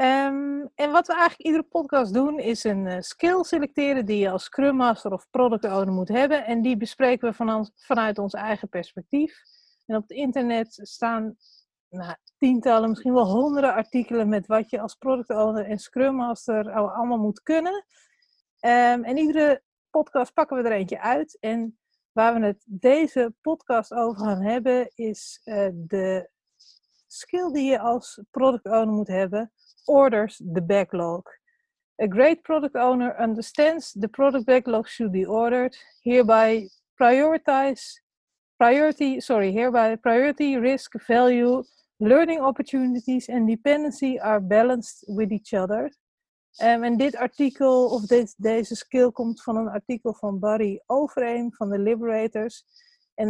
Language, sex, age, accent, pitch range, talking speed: Dutch, female, 40-59, Dutch, 215-275 Hz, 150 wpm